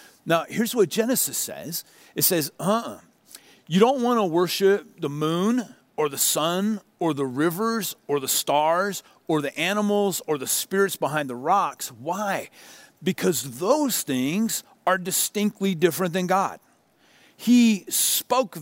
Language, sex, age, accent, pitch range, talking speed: English, male, 40-59, American, 140-200 Hz, 140 wpm